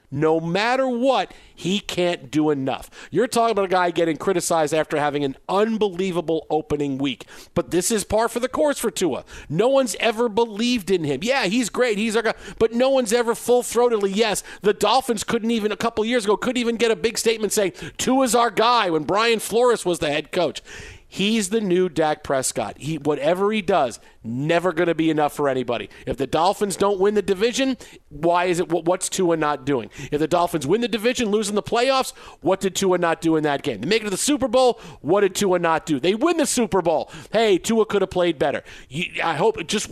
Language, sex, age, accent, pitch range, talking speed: English, male, 50-69, American, 160-225 Hz, 220 wpm